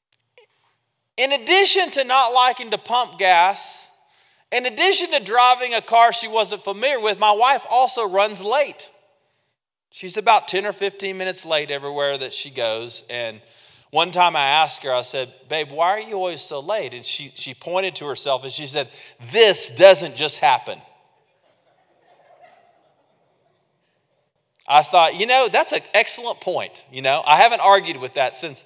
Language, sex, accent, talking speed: English, male, American, 165 wpm